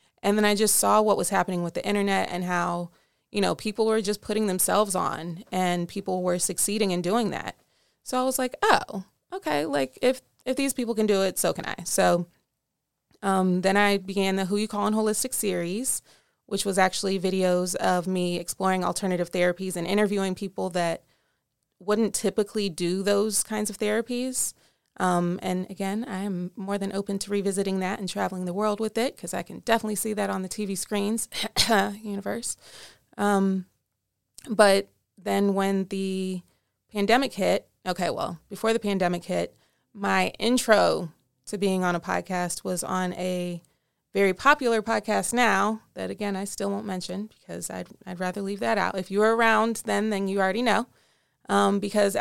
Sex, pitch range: female, 185-210 Hz